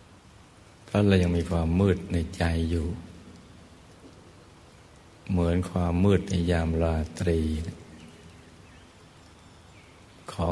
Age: 60-79